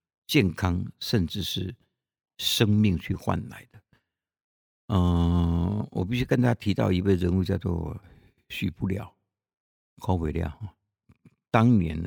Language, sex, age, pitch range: Chinese, male, 60-79, 85-110 Hz